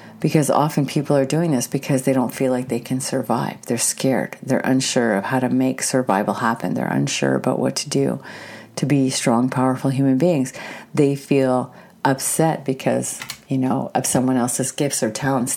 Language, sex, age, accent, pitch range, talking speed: English, female, 50-69, American, 130-140 Hz, 185 wpm